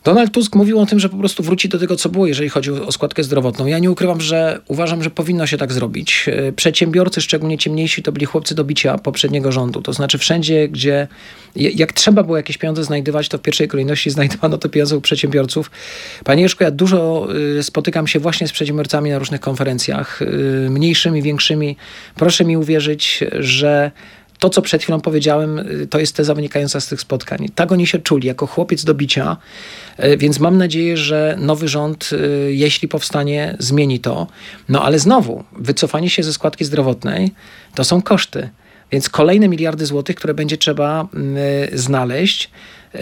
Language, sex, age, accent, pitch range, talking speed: Polish, male, 40-59, native, 145-170 Hz, 175 wpm